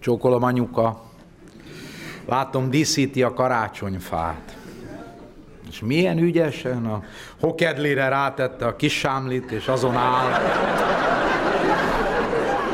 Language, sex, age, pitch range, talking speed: Hungarian, male, 60-79, 120-150 Hz, 80 wpm